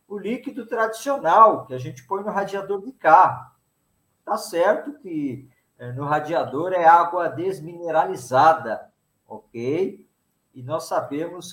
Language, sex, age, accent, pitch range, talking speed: Portuguese, male, 50-69, Brazilian, 145-205 Hz, 120 wpm